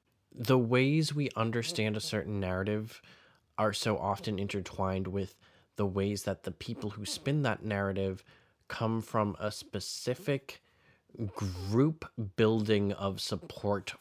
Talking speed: 125 wpm